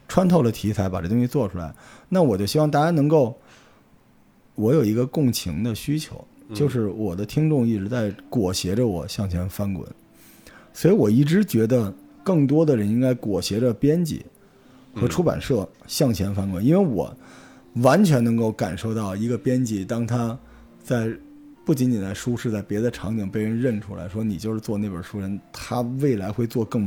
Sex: male